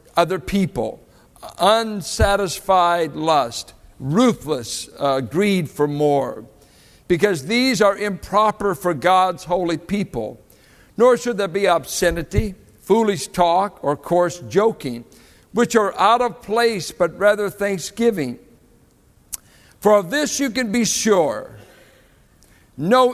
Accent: American